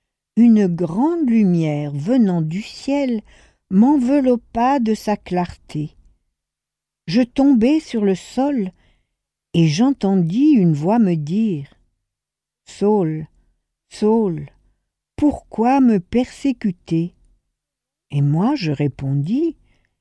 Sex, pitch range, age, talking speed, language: female, 160-245 Hz, 60-79, 90 wpm, French